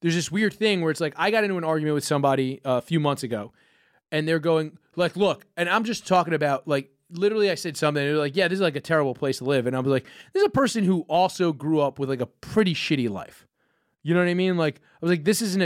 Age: 30-49